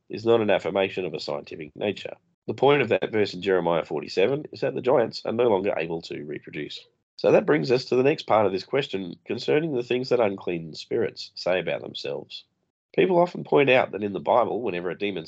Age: 30-49